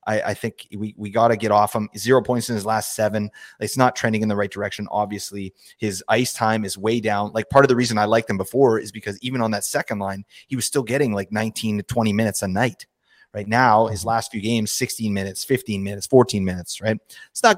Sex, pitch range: male, 100-125 Hz